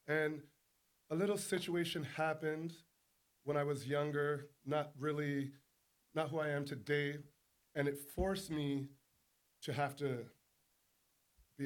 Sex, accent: male, American